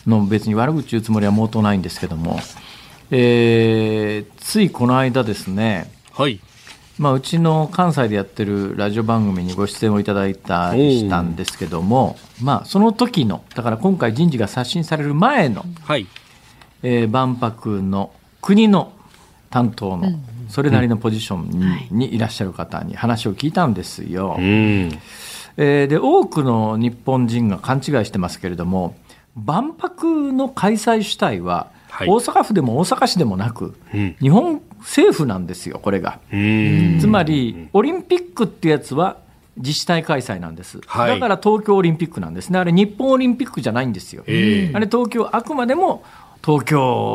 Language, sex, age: Japanese, male, 50-69